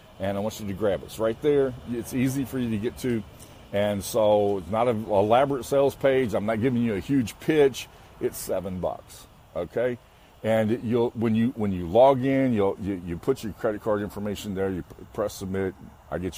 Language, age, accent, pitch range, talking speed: English, 50-69, American, 95-115 Hz, 215 wpm